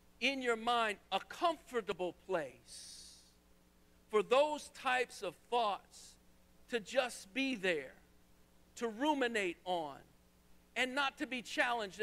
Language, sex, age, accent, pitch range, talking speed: English, male, 50-69, American, 175-250 Hz, 115 wpm